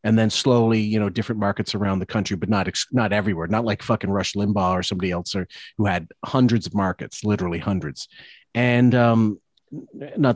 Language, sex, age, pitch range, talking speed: English, male, 40-59, 100-130 Hz, 185 wpm